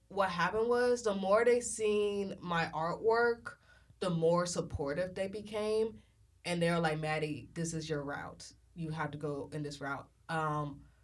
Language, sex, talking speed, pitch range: English, female, 170 wpm, 150-180 Hz